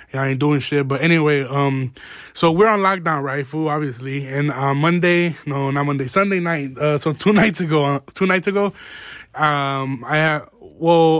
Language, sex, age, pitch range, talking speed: English, male, 20-39, 140-175 Hz, 200 wpm